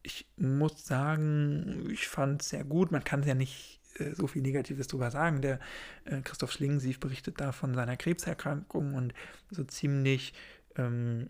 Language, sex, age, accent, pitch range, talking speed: German, male, 40-59, German, 135-155 Hz, 170 wpm